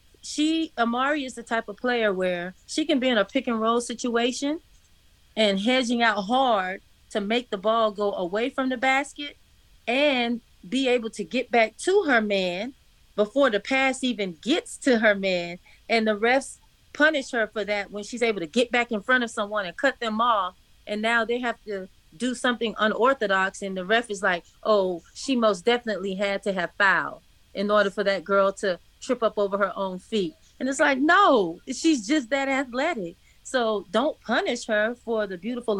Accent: American